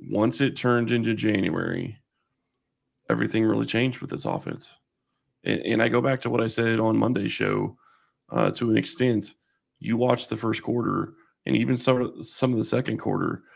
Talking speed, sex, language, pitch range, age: 175 wpm, male, English, 105-120 Hz, 30-49